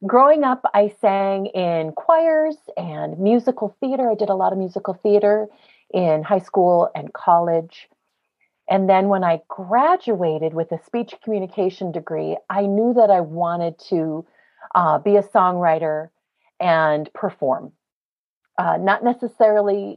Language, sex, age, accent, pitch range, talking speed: English, female, 40-59, American, 175-230 Hz, 140 wpm